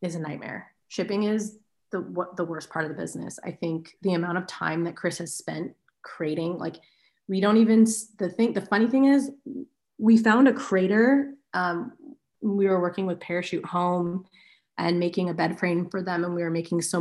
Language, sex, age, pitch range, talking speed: English, female, 30-49, 170-200 Hz, 200 wpm